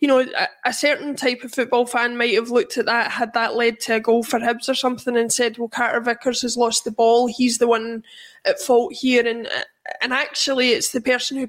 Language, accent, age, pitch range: English, British, 20-39, 235-275 Hz